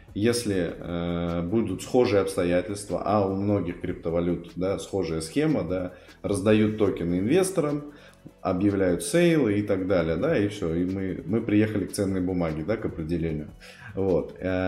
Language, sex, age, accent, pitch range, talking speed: Russian, male, 20-39, native, 85-105 Hz, 140 wpm